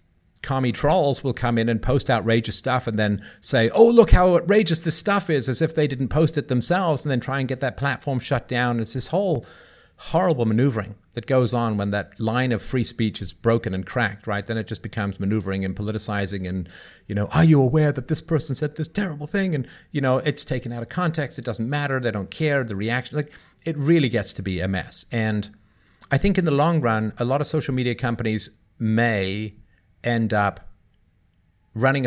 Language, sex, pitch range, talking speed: English, male, 105-135 Hz, 215 wpm